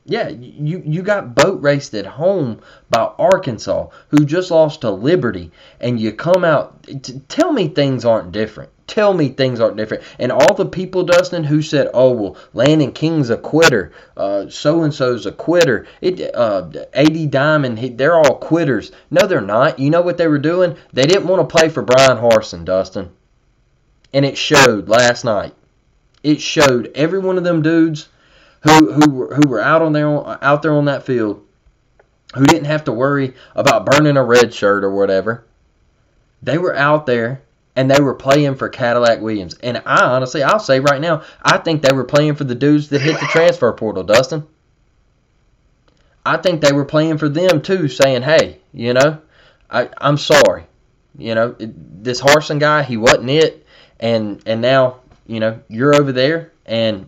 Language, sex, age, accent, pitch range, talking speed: English, male, 20-39, American, 125-160 Hz, 180 wpm